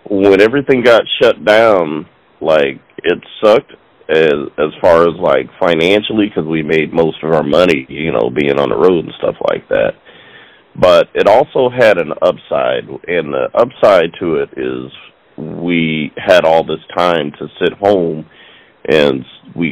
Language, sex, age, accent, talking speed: English, male, 40-59, American, 160 wpm